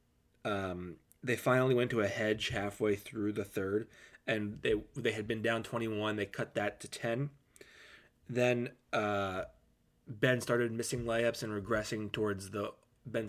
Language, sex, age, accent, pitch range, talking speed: English, male, 20-39, American, 100-115 Hz, 155 wpm